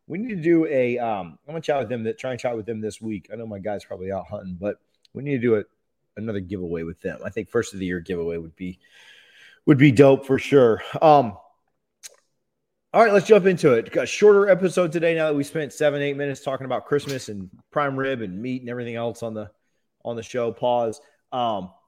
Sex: male